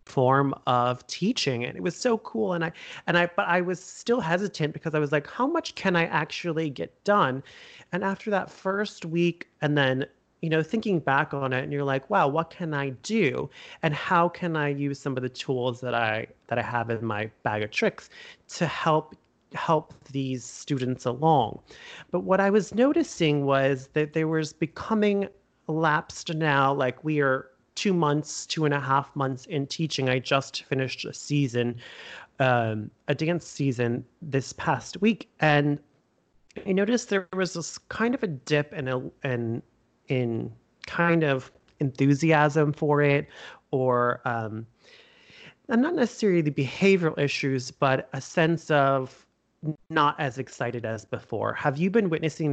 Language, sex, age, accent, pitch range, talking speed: English, male, 30-49, American, 130-170 Hz, 170 wpm